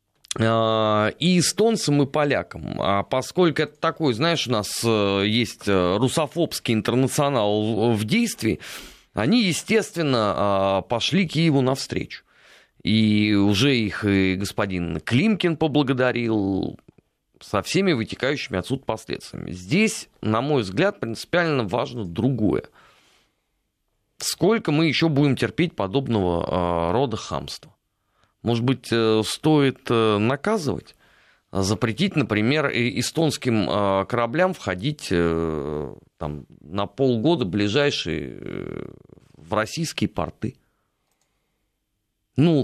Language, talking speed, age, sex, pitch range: Russian, 90 wpm, 30-49, male, 100-145 Hz